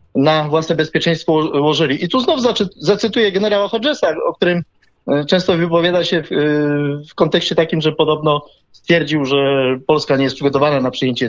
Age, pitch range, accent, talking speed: 30-49, 155-200 Hz, native, 150 wpm